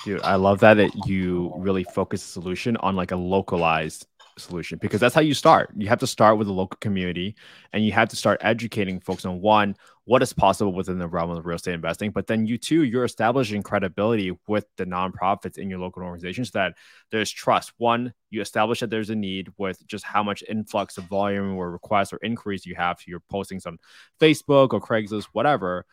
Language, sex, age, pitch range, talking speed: English, male, 20-39, 95-115 Hz, 210 wpm